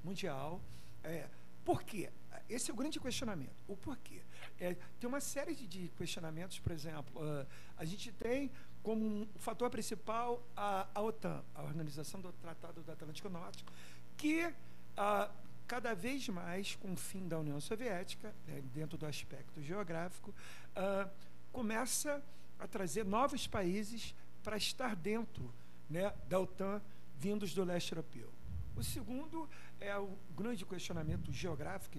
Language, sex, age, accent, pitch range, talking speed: Portuguese, male, 50-69, Brazilian, 155-220 Hz, 145 wpm